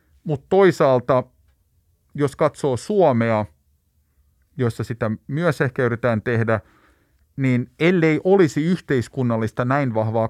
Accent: native